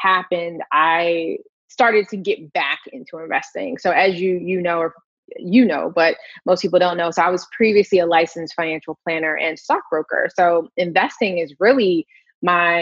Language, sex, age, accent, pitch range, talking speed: English, female, 20-39, American, 165-200 Hz, 170 wpm